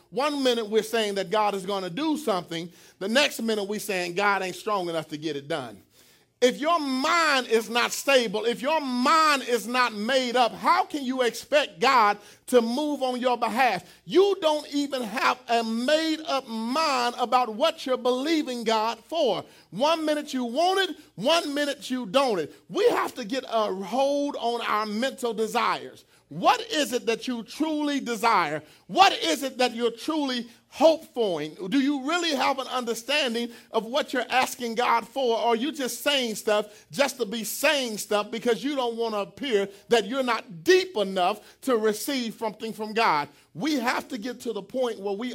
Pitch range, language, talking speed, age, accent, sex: 220-285 Hz, English, 190 wpm, 40-59, American, male